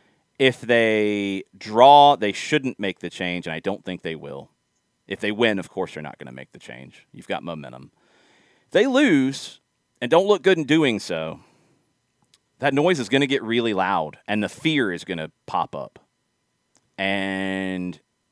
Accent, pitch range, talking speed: American, 90-130 Hz, 185 wpm